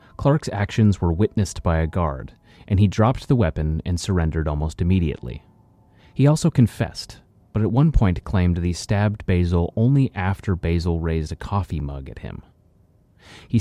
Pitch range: 80-110 Hz